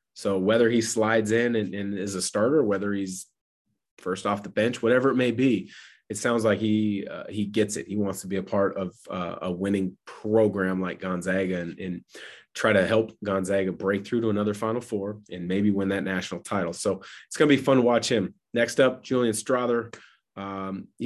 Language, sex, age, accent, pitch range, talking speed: English, male, 30-49, American, 95-115 Hz, 210 wpm